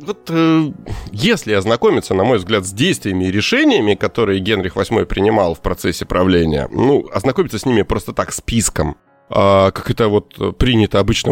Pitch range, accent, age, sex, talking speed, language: 95-135 Hz, native, 30-49, male, 160 wpm, Russian